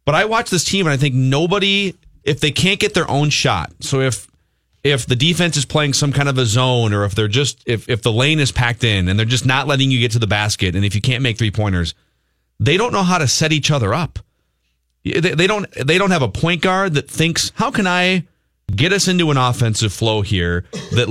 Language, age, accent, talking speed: English, 30-49, American, 245 wpm